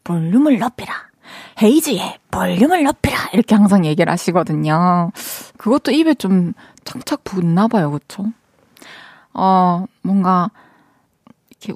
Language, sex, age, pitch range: Korean, female, 20-39, 170-245 Hz